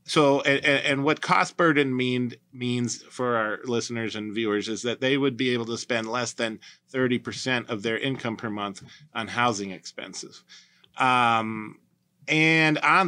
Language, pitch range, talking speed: English, 110-140 Hz, 155 wpm